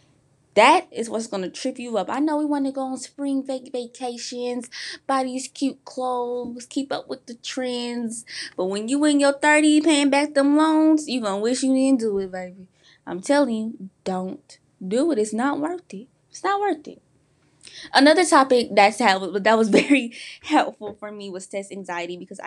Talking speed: 190 wpm